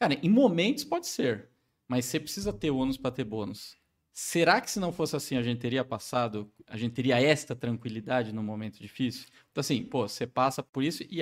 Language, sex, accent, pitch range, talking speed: Portuguese, male, Brazilian, 120-155 Hz, 210 wpm